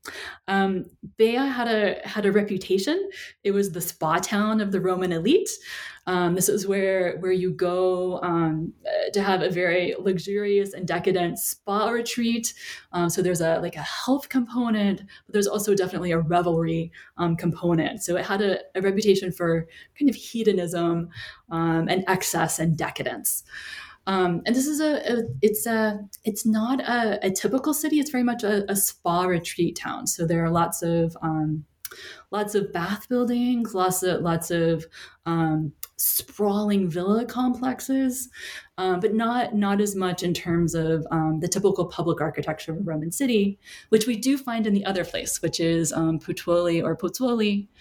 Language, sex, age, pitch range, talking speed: English, female, 20-39, 170-210 Hz, 170 wpm